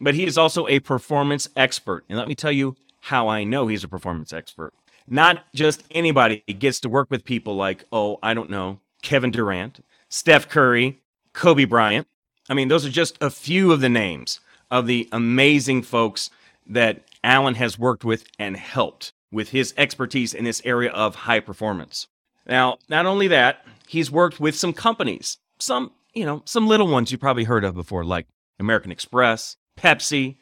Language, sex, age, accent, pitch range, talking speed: English, male, 30-49, American, 115-150 Hz, 180 wpm